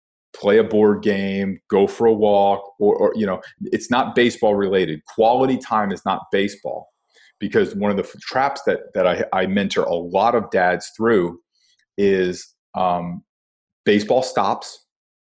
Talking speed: 155 wpm